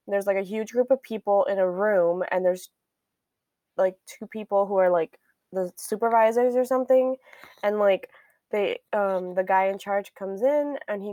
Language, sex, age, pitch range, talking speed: English, female, 10-29, 195-230 Hz, 180 wpm